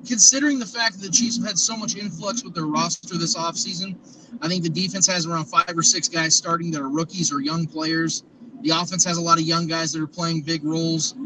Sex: male